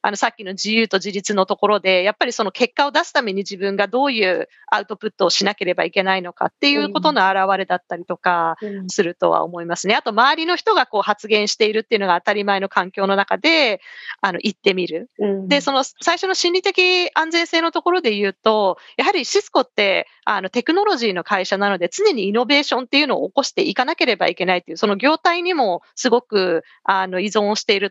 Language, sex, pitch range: Japanese, female, 195-320 Hz